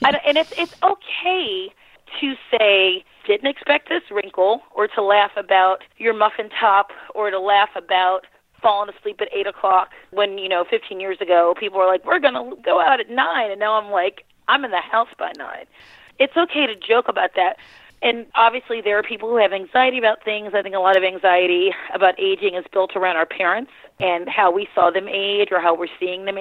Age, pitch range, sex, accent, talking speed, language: 30-49, 185-270 Hz, female, American, 210 wpm, English